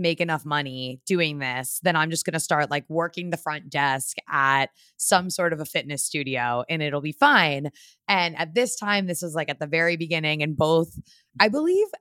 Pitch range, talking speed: 150-190 Hz, 210 wpm